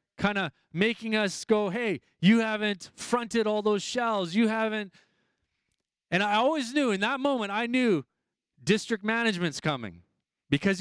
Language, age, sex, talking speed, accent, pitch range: English, 30-49, male, 150 wpm, American, 175-225 Hz